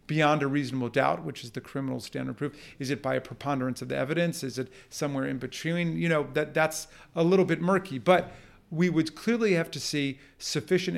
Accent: American